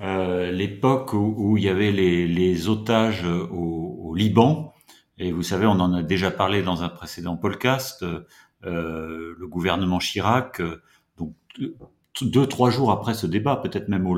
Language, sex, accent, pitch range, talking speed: French, male, French, 90-120 Hz, 160 wpm